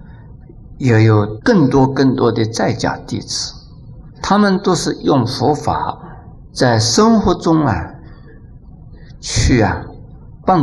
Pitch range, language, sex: 115-150 Hz, Chinese, male